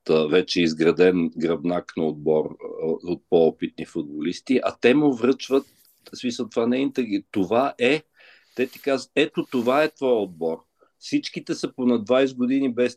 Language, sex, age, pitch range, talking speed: Bulgarian, male, 50-69, 95-120 Hz, 155 wpm